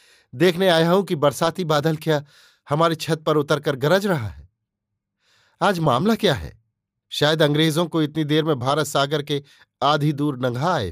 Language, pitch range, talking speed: Hindi, 120-155 Hz, 170 wpm